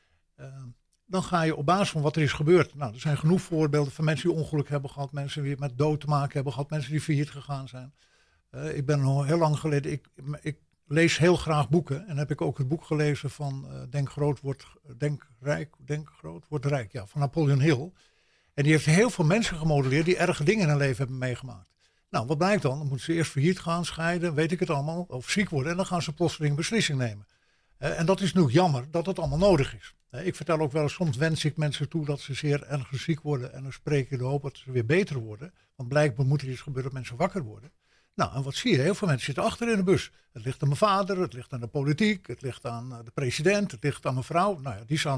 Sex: male